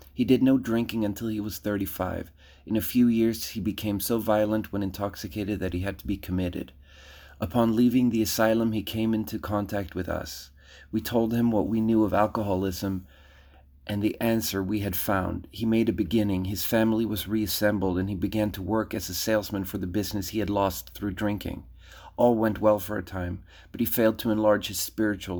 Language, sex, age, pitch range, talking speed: English, male, 30-49, 95-110 Hz, 200 wpm